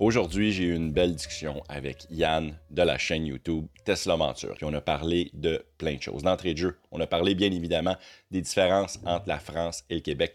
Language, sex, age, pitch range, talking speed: French, male, 30-49, 80-100 Hz, 215 wpm